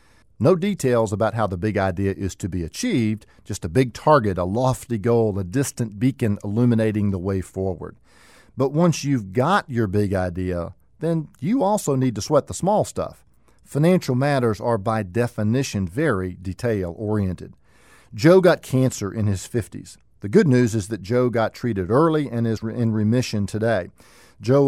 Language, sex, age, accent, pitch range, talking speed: English, male, 50-69, American, 105-130 Hz, 170 wpm